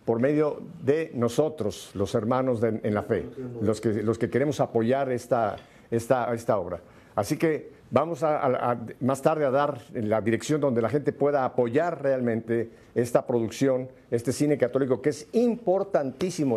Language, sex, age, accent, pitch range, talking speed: Spanish, male, 50-69, Mexican, 120-165 Hz, 170 wpm